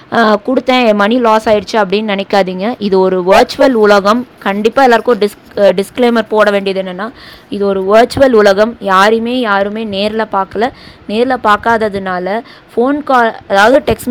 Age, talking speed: 20-39, 130 wpm